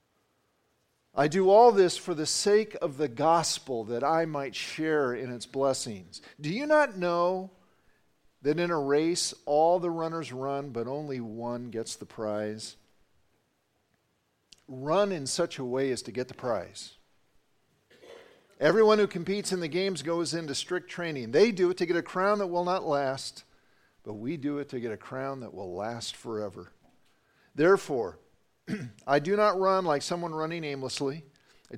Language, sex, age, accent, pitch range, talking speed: English, male, 50-69, American, 130-175 Hz, 165 wpm